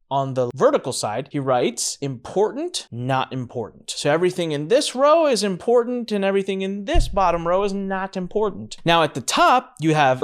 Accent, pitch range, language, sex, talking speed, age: American, 125-195 Hz, English, male, 180 wpm, 30-49